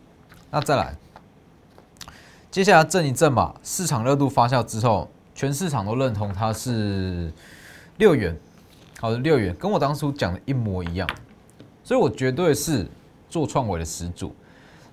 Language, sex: Chinese, male